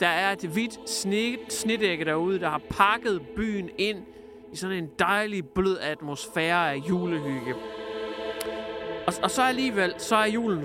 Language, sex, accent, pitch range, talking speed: Danish, male, native, 165-230 Hz, 145 wpm